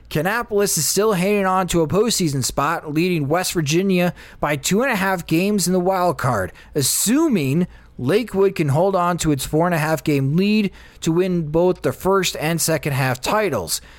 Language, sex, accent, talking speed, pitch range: English, male, American, 190 wpm, 150-195 Hz